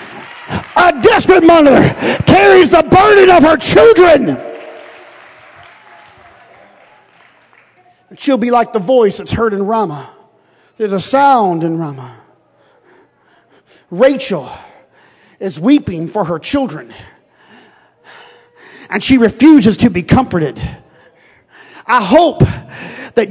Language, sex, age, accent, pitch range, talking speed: English, male, 40-59, American, 230-315 Hz, 100 wpm